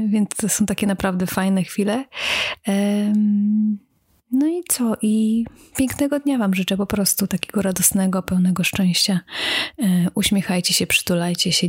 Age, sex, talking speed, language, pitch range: 30-49, female, 130 wpm, Polish, 185-215 Hz